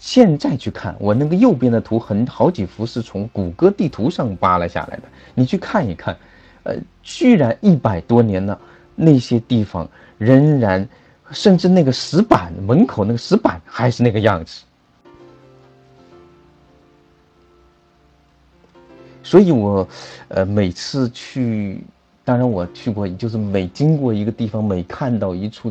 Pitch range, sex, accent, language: 90-120 Hz, male, native, Chinese